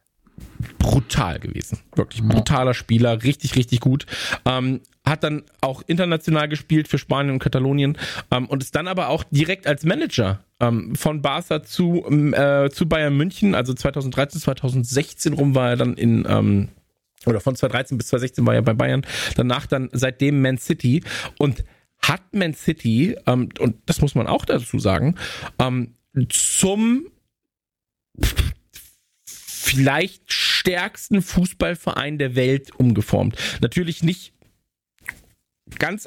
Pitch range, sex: 125-160 Hz, male